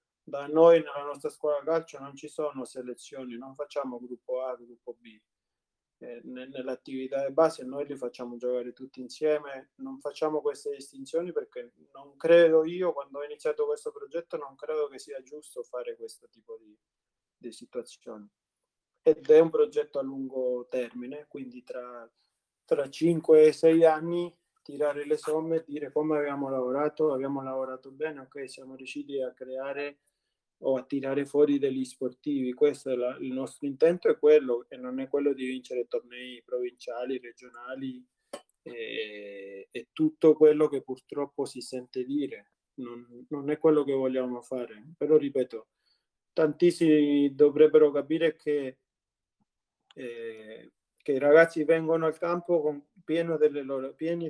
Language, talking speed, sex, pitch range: Italian, 150 wpm, male, 130-165 Hz